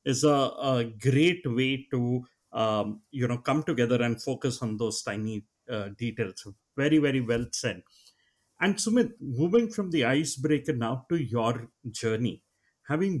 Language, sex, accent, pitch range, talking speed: English, male, Indian, 120-165 Hz, 150 wpm